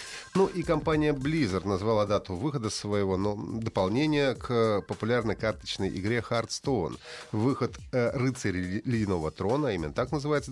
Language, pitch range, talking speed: Russian, 95-135 Hz, 145 wpm